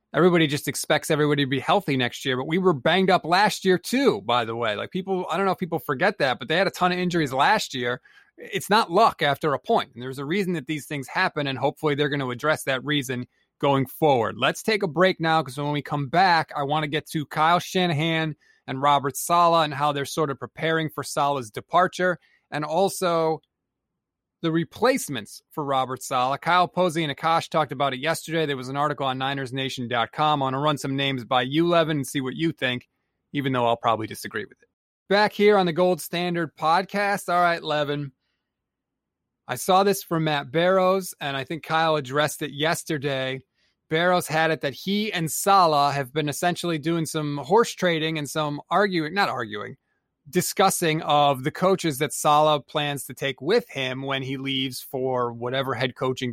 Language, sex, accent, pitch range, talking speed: English, male, American, 135-175 Hz, 205 wpm